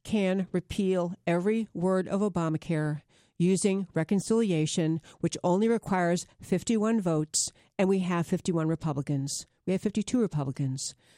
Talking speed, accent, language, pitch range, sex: 120 wpm, American, English, 180-235 Hz, female